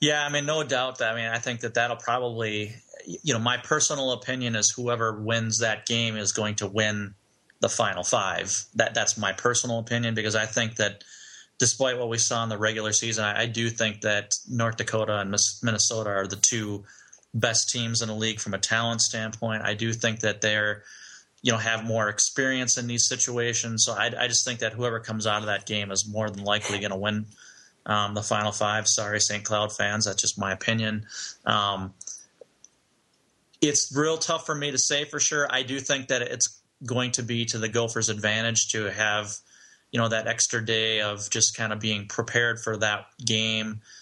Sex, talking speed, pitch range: male, 205 wpm, 105-120 Hz